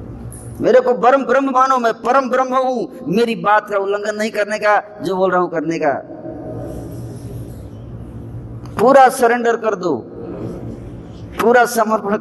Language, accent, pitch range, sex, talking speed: Hindi, native, 130-195 Hz, female, 140 wpm